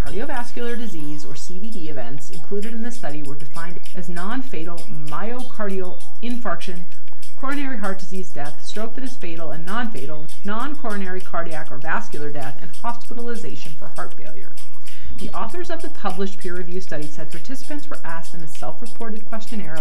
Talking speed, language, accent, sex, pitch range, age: 155 wpm, English, American, female, 155-220 Hz, 30-49